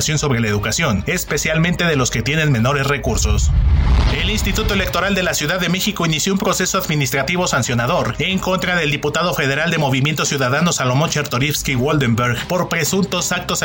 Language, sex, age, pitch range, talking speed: Spanish, male, 30-49, 130-175 Hz, 160 wpm